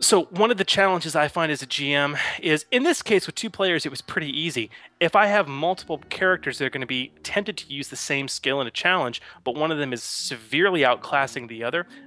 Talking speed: 245 wpm